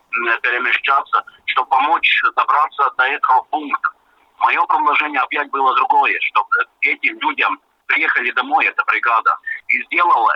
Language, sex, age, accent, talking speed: Russian, male, 50-69, native, 120 wpm